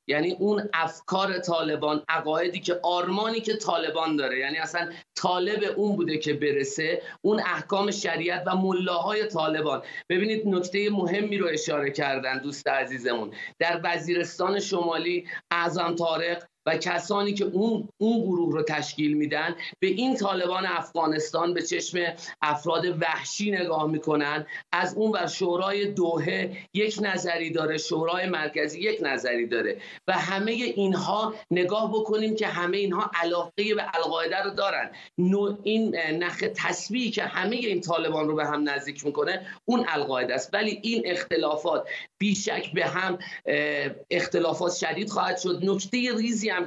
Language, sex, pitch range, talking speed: Persian, male, 160-200 Hz, 140 wpm